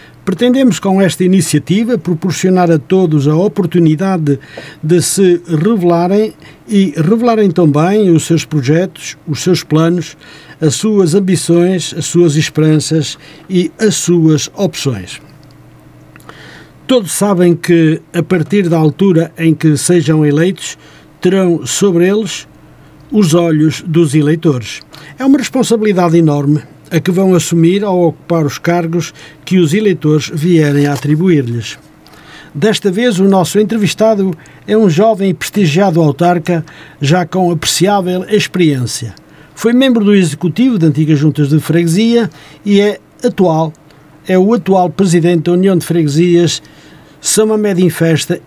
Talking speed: 130 wpm